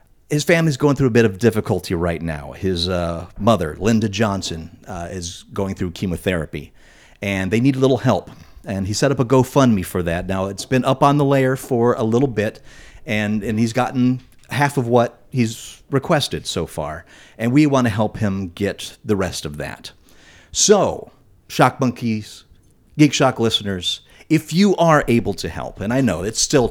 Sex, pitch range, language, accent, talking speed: male, 95-135 Hz, English, American, 190 wpm